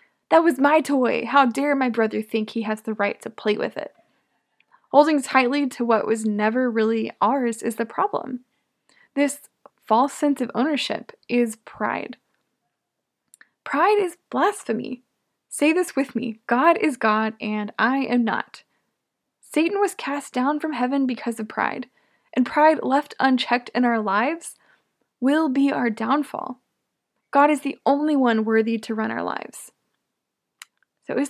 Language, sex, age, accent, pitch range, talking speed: English, female, 10-29, American, 230-290 Hz, 155 wpm